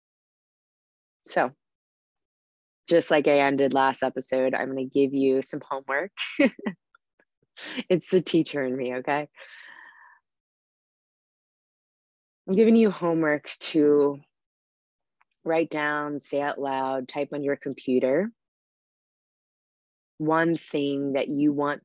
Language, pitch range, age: English, 130-160 Hz, 20-39